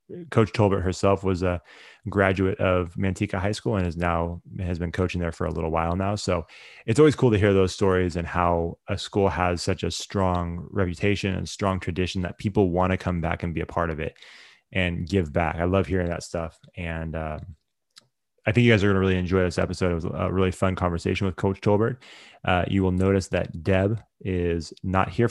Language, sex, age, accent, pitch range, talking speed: English, male, 20-39, American, 85-100 Hz, 220 wpm